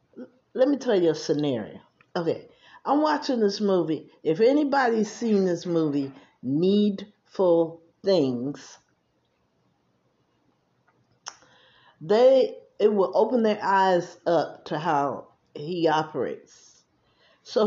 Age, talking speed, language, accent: 50-69, 100 wpm, English, American